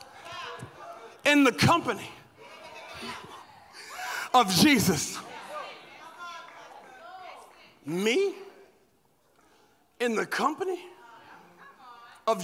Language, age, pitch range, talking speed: English, 40-59, 360-425 Hz, 50 wpm